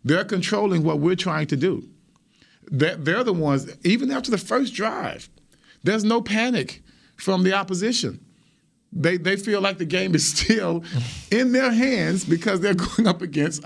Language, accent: English, American